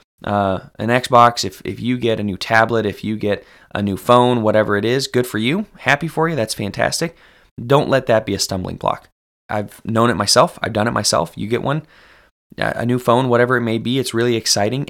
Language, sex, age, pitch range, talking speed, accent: English, male, 20-39, 100-125 Hz, 220 wpm, American